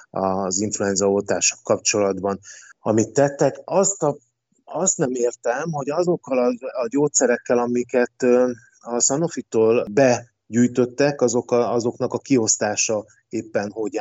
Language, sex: Hungarian, male